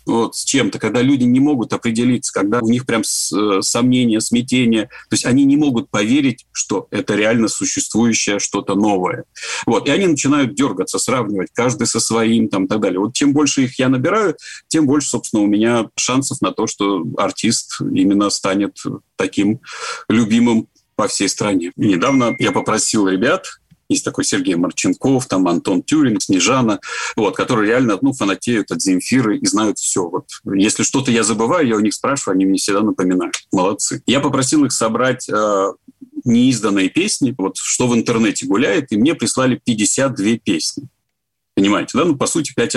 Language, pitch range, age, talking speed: Russian, 105-145 Hz, 40-59, 160 wpm